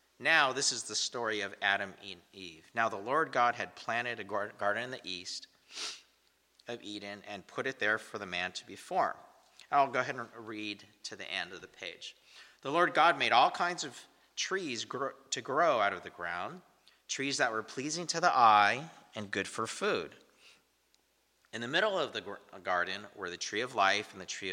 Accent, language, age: American, English, 40-59